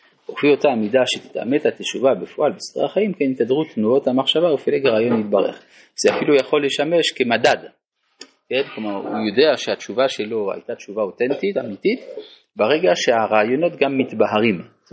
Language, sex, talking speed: Hebrew, male, 135 wpm